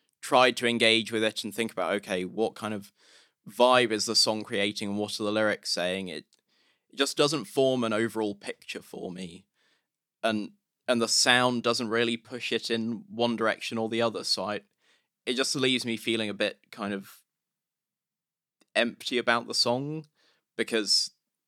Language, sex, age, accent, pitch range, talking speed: English, male, 20-39, British, 105-120 Hz, 175 wpm